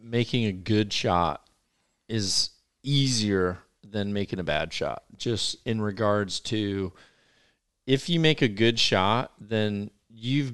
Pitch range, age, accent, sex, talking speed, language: 100-115 Hz, 40-59, American, male, 130 wpm, English